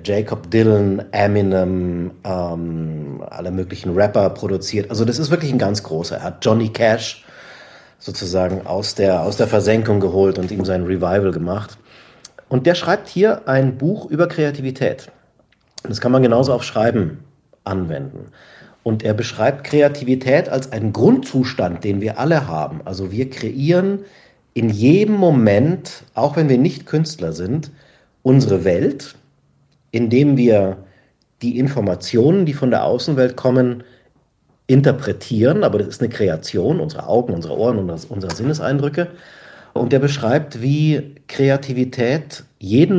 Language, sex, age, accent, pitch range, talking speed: German, male, 40-59, German, 105-140 Hz, 140 wpm